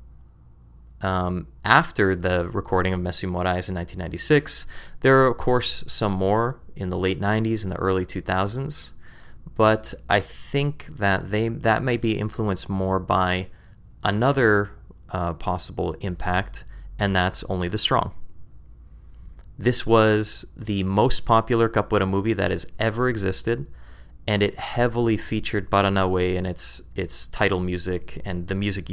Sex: male